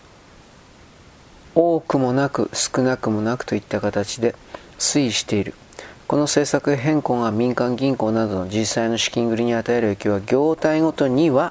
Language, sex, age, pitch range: Japanese, male, 40-59, 110-125 Hz